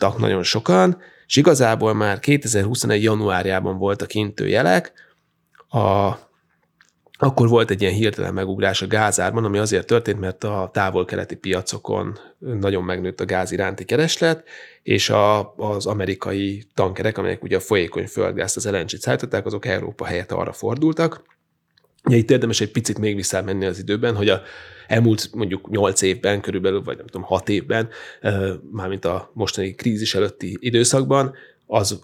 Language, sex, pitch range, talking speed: Hungarian, male, 95-110 Hz, 150 wpm